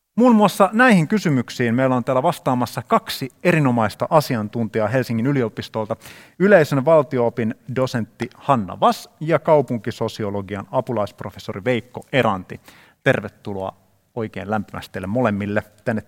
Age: 30-49